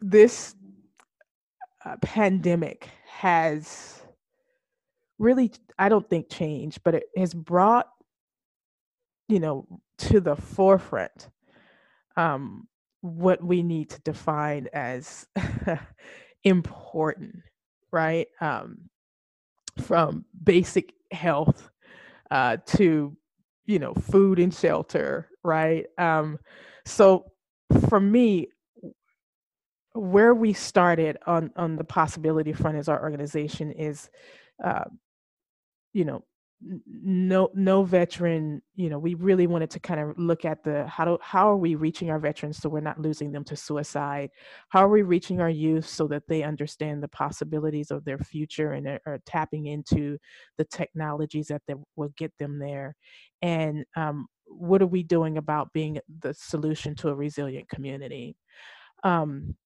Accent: American